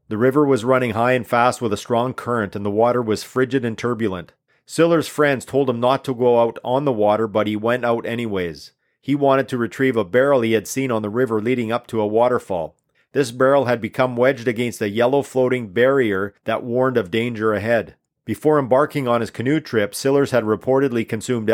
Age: 40-59